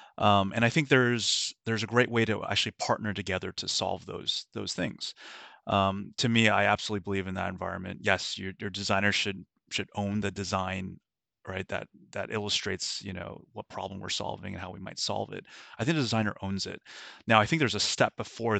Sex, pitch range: male, 100-115 Hz